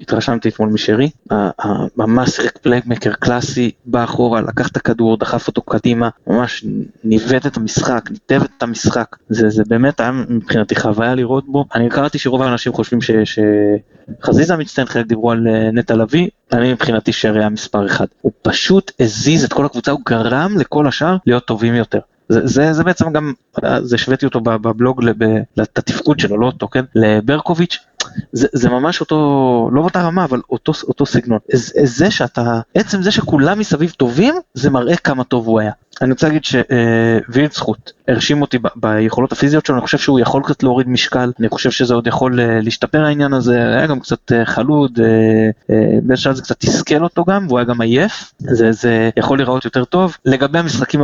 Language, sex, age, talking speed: Hebrew, male, 20-39, 170 wpm